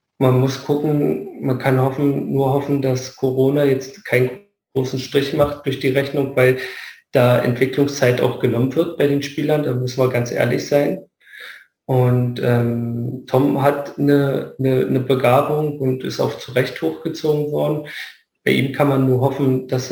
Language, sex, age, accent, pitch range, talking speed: German, male, 40-59, German, 130-145 Hz, 165 wpm